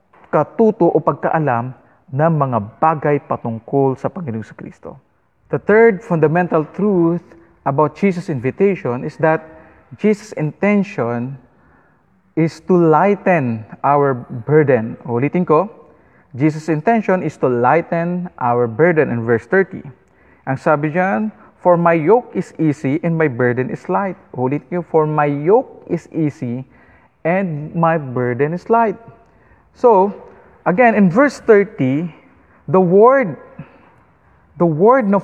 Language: English